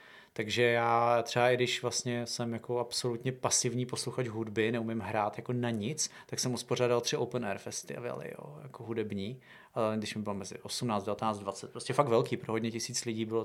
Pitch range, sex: 115-120 Hz, male